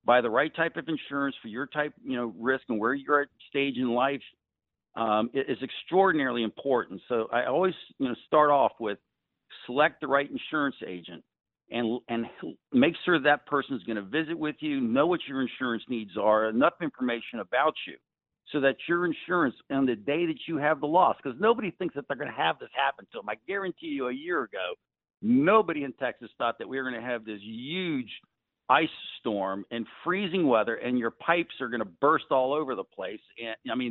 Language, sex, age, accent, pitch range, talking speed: English, male, 50-69, American, 125-170 Hz, 210 wpm